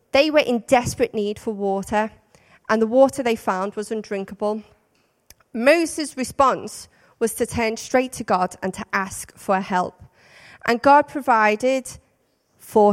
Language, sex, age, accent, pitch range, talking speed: English, female, 30-49, British, 190-235 Hz, 145 wpm